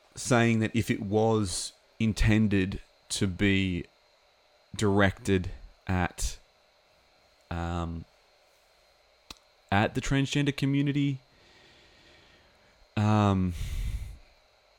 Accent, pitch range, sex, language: Australian, 90-110 Hz, male, English